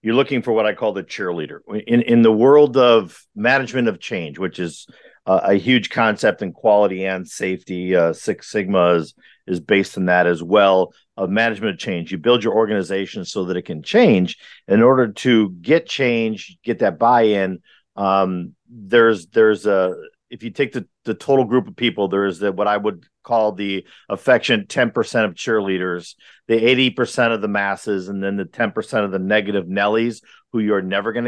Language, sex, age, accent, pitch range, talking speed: English, male, 50-69, American, 95-120 Hz, 190 wpm